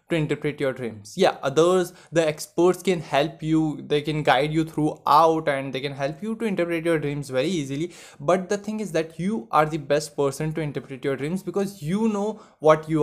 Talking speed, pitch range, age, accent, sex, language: 215 wpm, 150-185 Hz, 20-39, native, male, Hindi